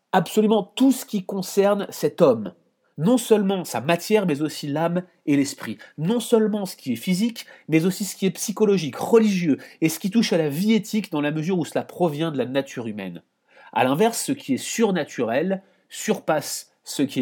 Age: 30-49